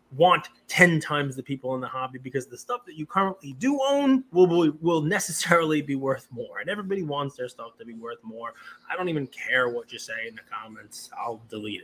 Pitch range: 130-190 Hz